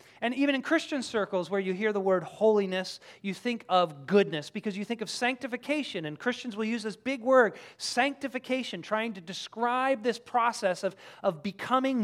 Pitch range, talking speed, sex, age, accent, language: 195-255 Hz, 180 wpm, male, 30-49, American, English